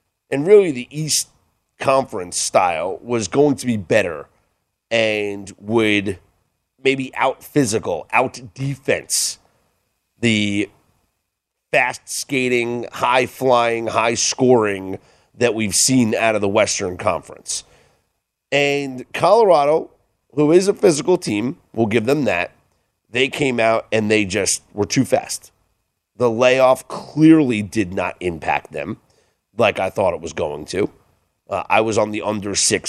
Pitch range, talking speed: 105-135 Hz, 125 wpm